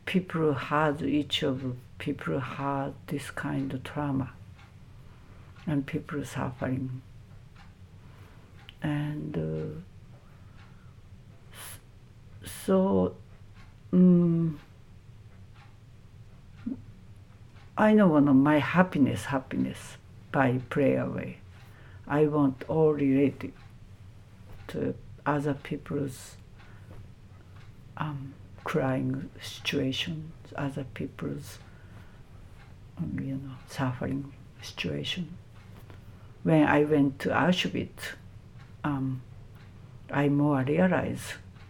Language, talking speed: English, 75 wpm